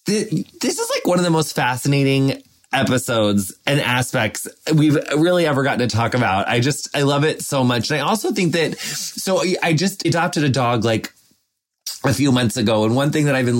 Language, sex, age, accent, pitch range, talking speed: English, male, 20-39, American, 125-160 Hz, 205 wpm